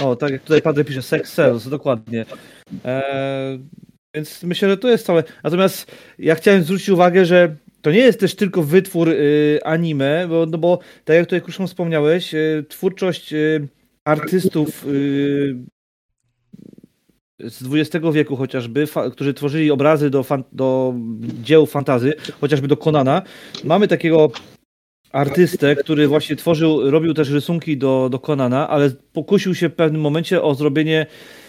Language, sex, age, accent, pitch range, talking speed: Polish, male, 30-49, native, 145-175 Hz, 150 wpm